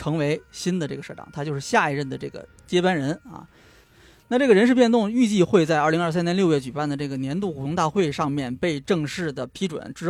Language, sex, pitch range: Chinese, male, 145-190 Hz